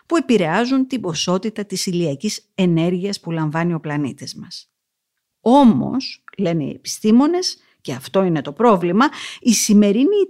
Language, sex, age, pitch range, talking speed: Greek, female, 50-69, 175-255 Hz, 135 wpm